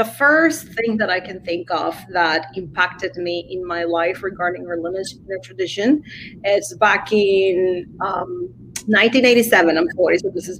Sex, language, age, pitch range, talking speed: female, English, 30-49, 170-210 Hz, 155 wpm